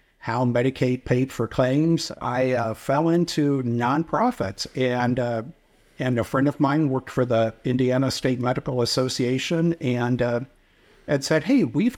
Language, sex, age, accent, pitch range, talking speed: English, male, 60-79, American, 120-145 Hz, 150 wpm